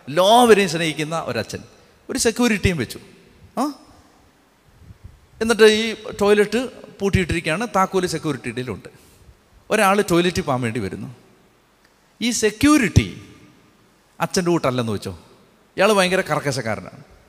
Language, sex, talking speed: Malayalam, male, 90 wpm